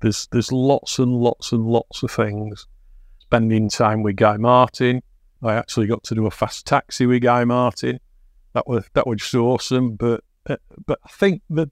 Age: 50-69